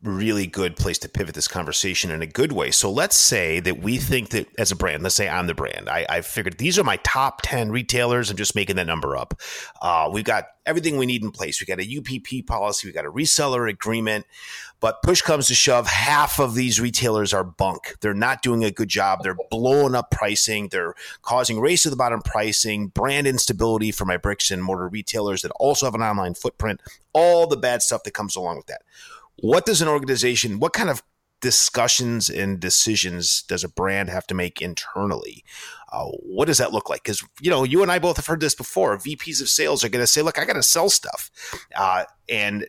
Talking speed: 225 wpm